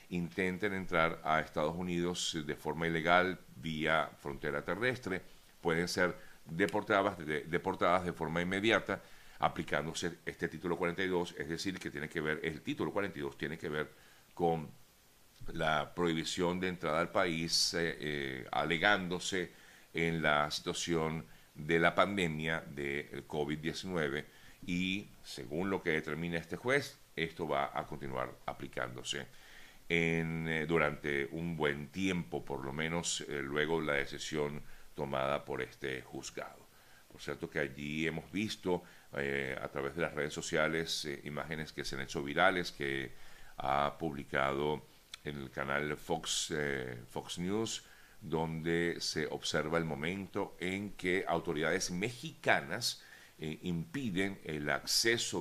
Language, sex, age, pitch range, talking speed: Spanish, male, 50-69, 75-90 Hz, 130 wpm